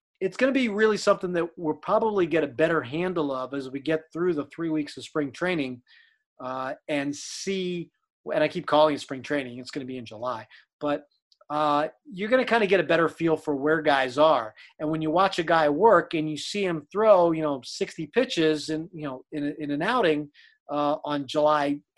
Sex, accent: male, American